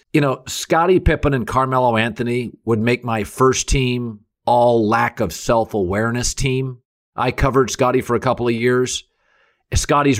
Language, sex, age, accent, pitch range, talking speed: English, male, 50-69, American, 115-150 Hz, 160 wpm